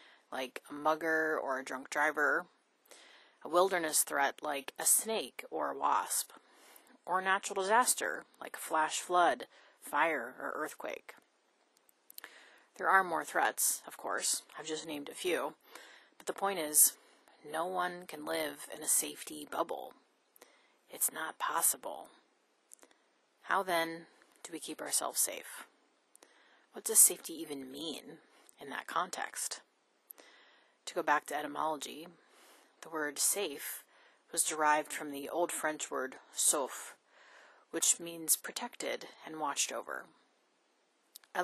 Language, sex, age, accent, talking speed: English, female, 30-49, American, 130 wpm